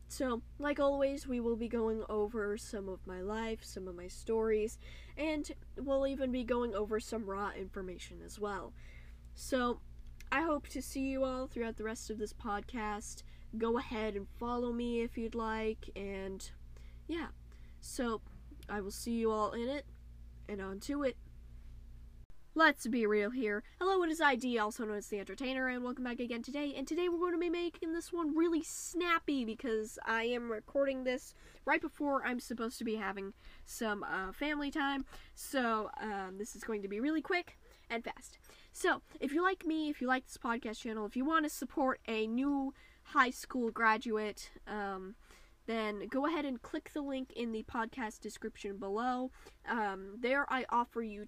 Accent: American